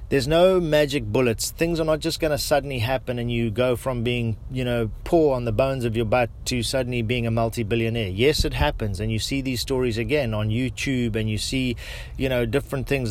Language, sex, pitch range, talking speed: English, male, 115-135 Hz, 225 wpm